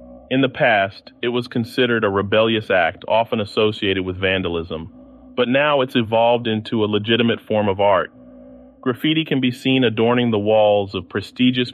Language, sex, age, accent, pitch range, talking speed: English, male, 30-49, American, 105-130 Hz, 165 wpm